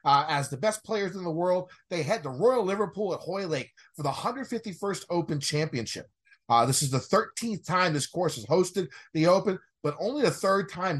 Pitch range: 150-205 Hz